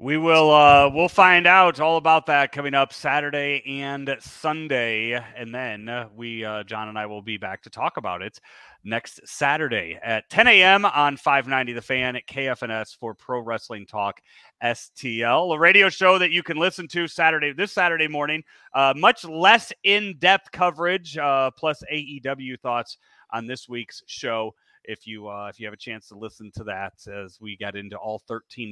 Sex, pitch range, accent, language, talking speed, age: male, 110-160 Hz, American, English, 180 wpm, 30-49